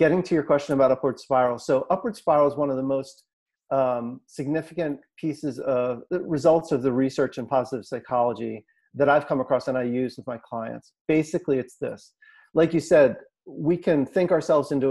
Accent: American